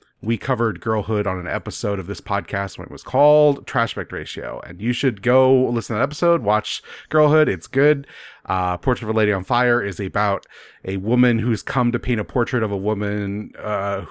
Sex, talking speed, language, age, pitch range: male, 205 wpm, English, 30-49, 100-125 Hz